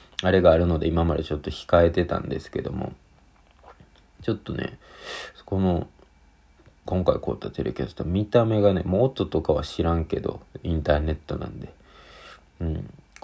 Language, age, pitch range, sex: Japanese, 40-59, 80-105 Hz, male